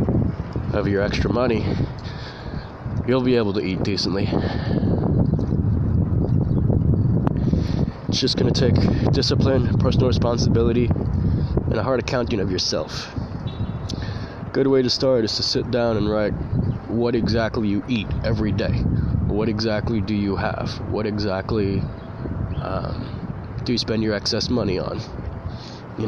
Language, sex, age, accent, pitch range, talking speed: English, male, 20-39, American, 100-120 Hz, 125 wpm